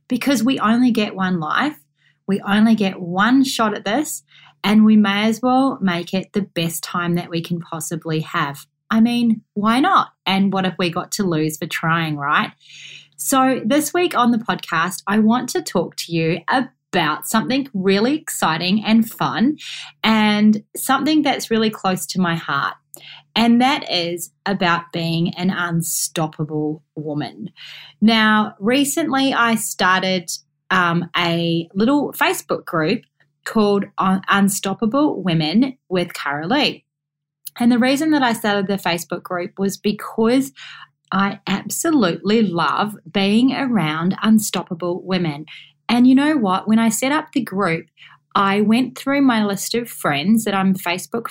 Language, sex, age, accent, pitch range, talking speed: English, female, 30-49, Australian, 165-230 Hz, 150 wpm